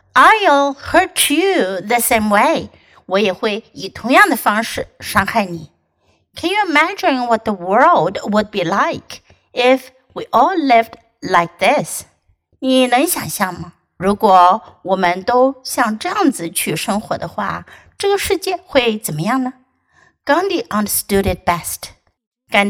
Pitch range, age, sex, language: 195-275 Hz, 60-79, female, Chinese